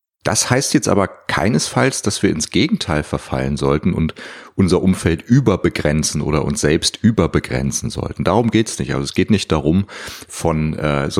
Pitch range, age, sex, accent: 75-100 Hz, 40-59, male, German